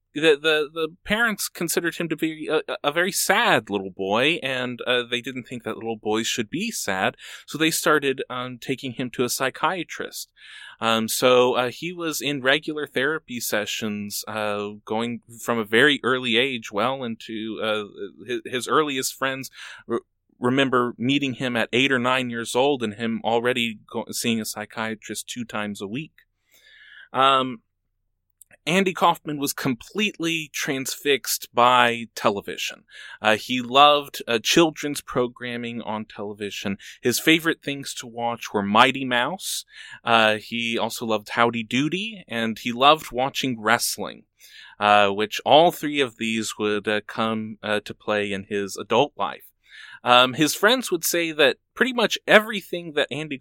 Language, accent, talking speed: English, American, 155 wpm